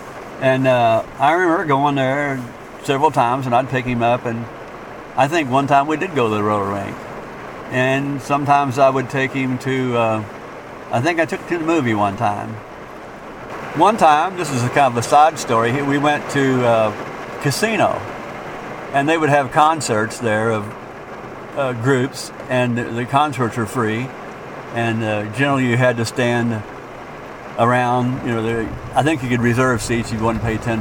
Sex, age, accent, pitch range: male, 60-79, American, 115-140 Hz